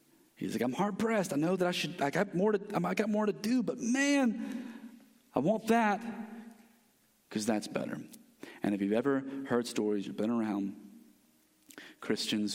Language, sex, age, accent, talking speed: English, male, 40-59, American, 170 wpm